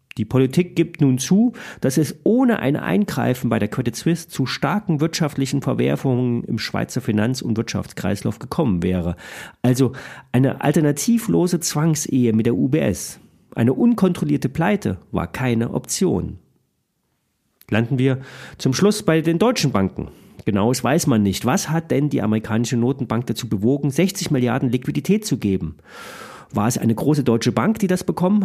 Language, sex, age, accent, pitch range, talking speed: German, male, 40-59, German, 120-170 Hz, 155 wpm